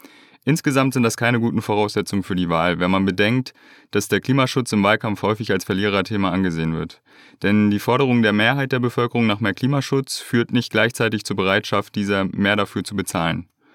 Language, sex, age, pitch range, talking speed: German, male, 30-49, 100-125 Hz, 185 wpm